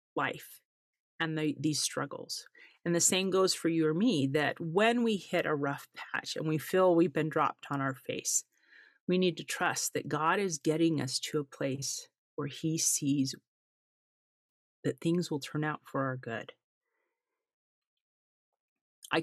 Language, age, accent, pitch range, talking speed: English, 40-59, American, 145-175 Hz, 165 wpm